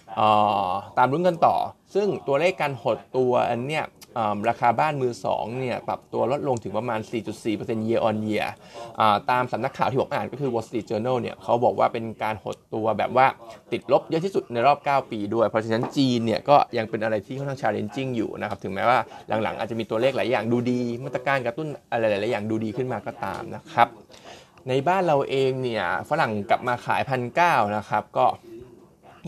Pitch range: 110-140 Hz